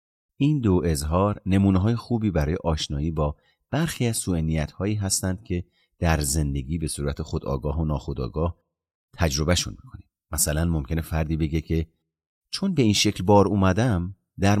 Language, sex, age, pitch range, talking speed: Persian, male, 40-59, 75-105 Hz, 160 wpm